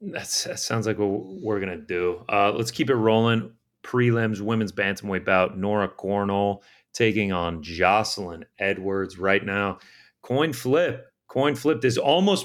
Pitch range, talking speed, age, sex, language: 90-115 Hz, 155 wpm, 30-49, male, English